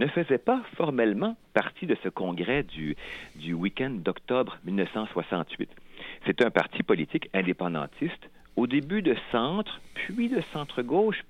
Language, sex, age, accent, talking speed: English, male, 50-69, French, 135 wpm